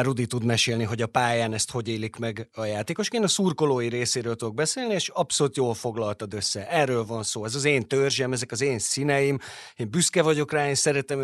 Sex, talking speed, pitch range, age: male, 215 wpm, 115-145 Hz, 30-49